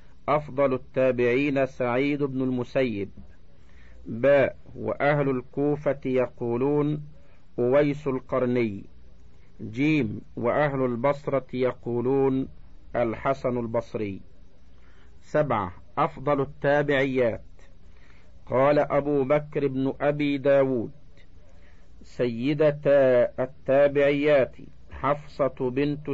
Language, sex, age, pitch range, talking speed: Arabic, male, 50-69, 110-140 Hz, 70 wpm